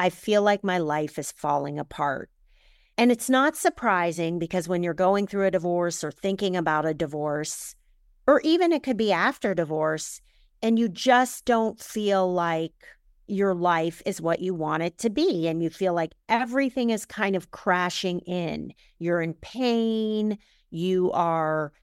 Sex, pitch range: female, 170-215 Hz